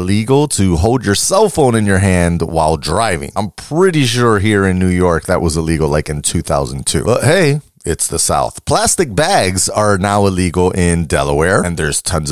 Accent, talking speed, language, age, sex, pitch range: American, 190 wpm, English, 30-49, male, 90-140 Hz